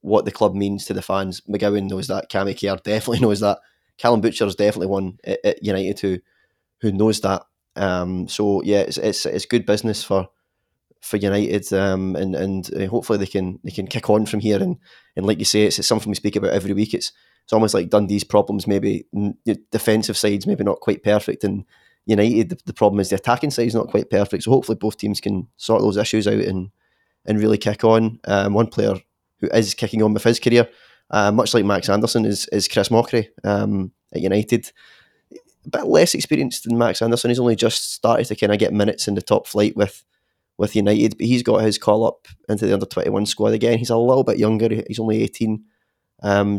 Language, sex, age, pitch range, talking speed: English, male, 20-39, 100-115 Hz, 220 wpm